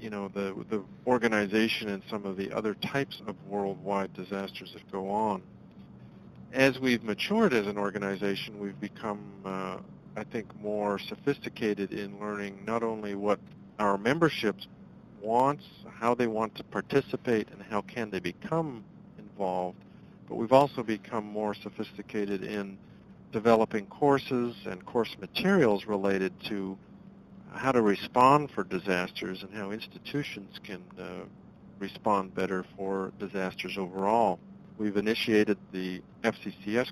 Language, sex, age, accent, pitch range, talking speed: English, male, 50-69, American, 100-115 Hz, 135 wpm